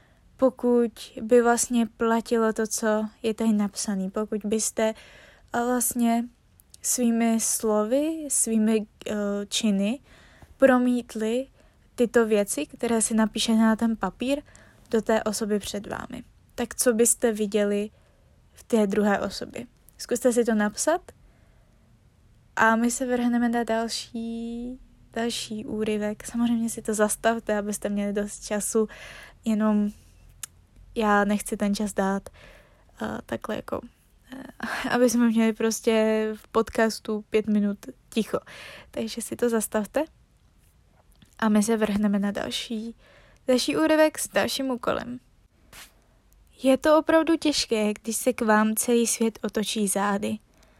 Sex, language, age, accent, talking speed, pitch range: female, Czech, 20-39, native, 125 wpm, 215-245 Hz